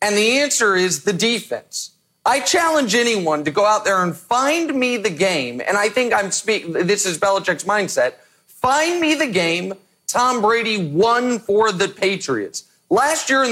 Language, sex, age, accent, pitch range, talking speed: English, male, 40-59, American, 200-250 Hz, 180 wpm